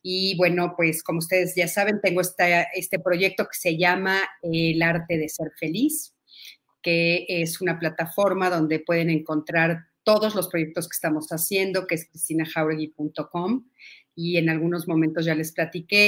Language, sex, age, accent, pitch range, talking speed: Spanish, female, 40-59, Mexican, 160-190 Hz, 155 wpm